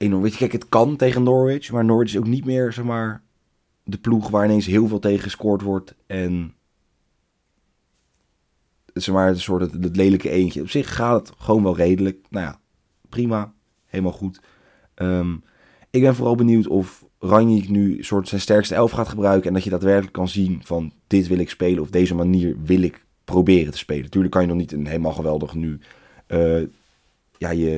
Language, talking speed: Dutch, 195 wpm